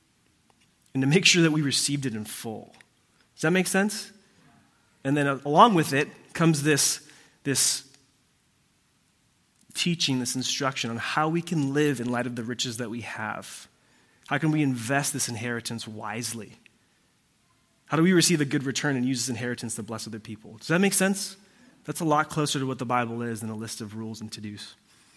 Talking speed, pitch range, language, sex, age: 195 wpm, 120-150 Hz, English, male, 20-39